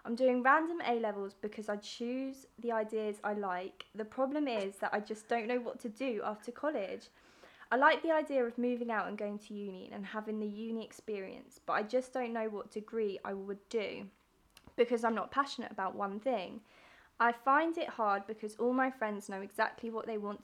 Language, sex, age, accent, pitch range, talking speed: English, female, 20-39, British, 210-260 Hz, 205 wpm